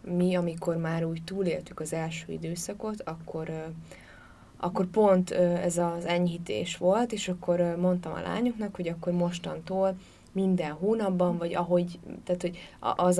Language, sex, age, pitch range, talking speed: Hungarian, female, 20-39, 165-185 Hz, 130 wpm